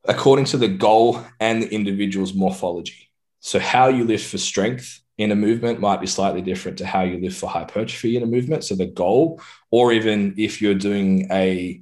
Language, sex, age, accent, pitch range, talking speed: English, male, 20-39, Australian, 95-110 Hz, 200 wpm